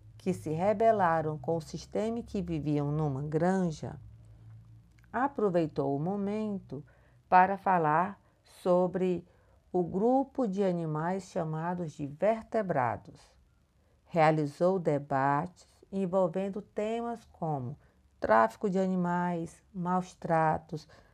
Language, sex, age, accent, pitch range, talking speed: Portuguese, female, 50-69, Brazilian, 155-205 Hz, 95 wpm